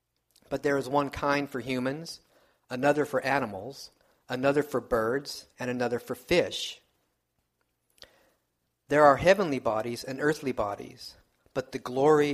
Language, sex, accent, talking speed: English, male, American, 130 wpm